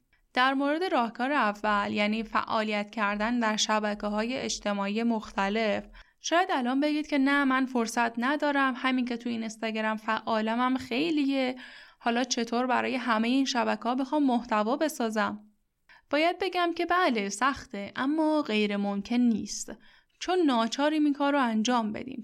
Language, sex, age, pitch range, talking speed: Persian, female, 10-29, 220-285 Hz, 145 wpm